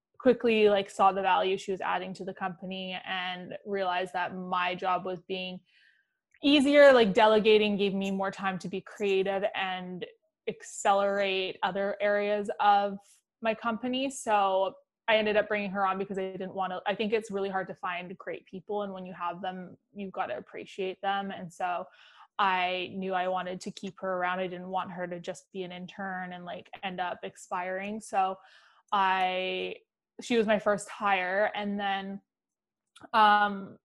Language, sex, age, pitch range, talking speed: English, female, 20-39, 190-210 Hz, 175 wpm